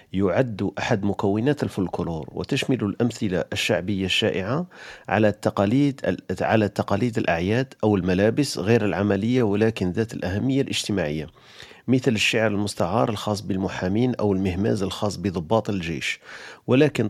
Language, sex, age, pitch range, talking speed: Arabic, male, 40-59, 100-120 Hz, 105 wpm